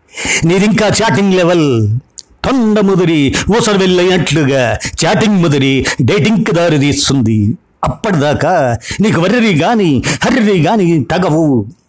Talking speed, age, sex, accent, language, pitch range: 95 wpm, 50-69, male, native, Telugu, 140-195 Hz